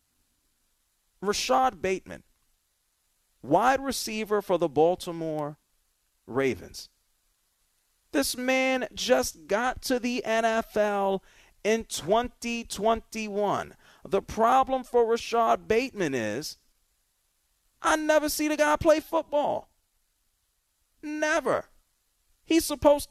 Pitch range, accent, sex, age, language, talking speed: 195-260 Hz, American, male, 40-59, English, 85 wpm